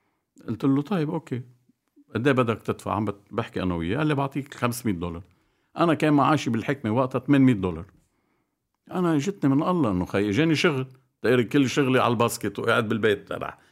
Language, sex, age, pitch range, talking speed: Arabic, male, 50-69, 100-140 Hz, 170 wpm